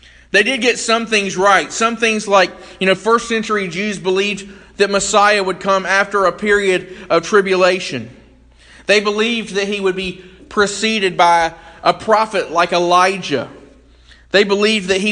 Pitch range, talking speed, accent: 170-205 Hz, 160 wpm, American